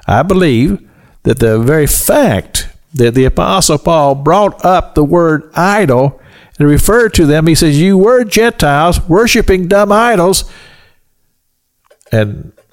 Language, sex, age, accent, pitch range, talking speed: English, male, 50-69, American, 110-170 Hz, 130 wpm